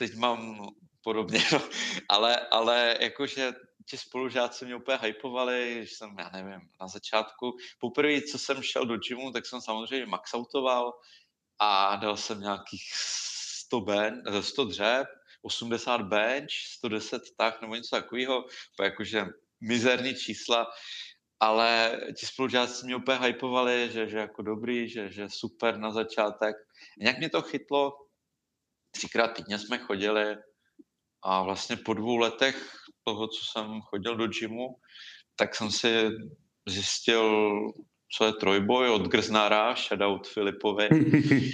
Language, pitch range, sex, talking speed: Czech, 105-125 Hz, male, 130 wpm